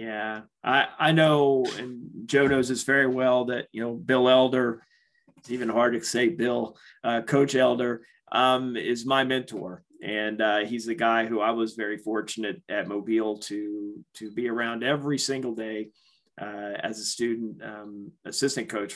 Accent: American